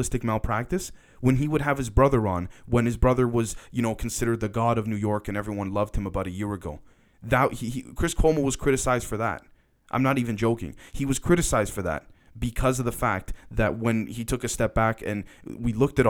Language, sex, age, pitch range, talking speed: English, male, 20-39, 105-135 Hz, 225 wpm